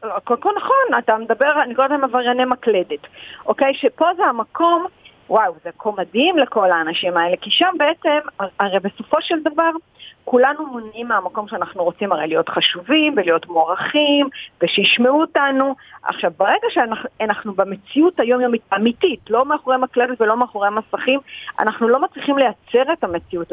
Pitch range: 200-285 Hz